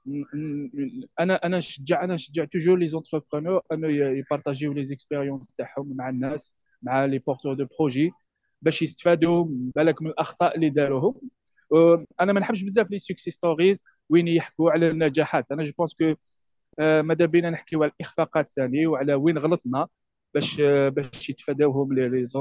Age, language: 20-39, English